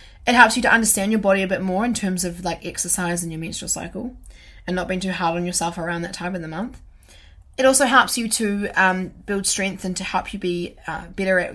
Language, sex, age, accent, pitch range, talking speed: English, female, 10-29, Australian, 185-225 Hz, 250 wpm